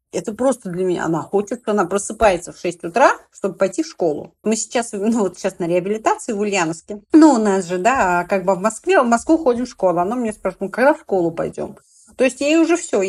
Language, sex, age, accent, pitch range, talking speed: Russian, female, 40-59, native, 195-240 Hz, 235 wpm